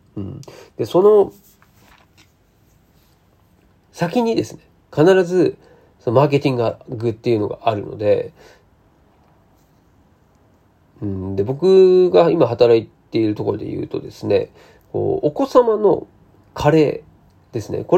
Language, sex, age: Japanese, male, 40-59